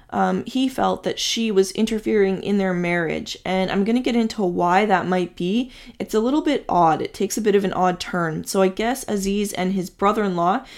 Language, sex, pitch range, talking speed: English, female, 185-220 Hz, 225 wpm